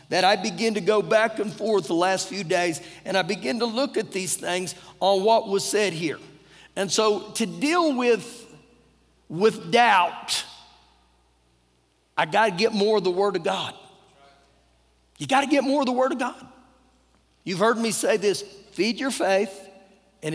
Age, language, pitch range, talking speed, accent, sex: 50-69, English, 150-220 Hz, 175 wpm, American, male